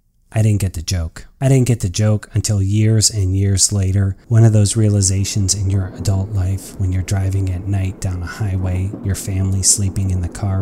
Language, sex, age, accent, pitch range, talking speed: English, male, 30-49, American, 95-115 Hz, 210 wpm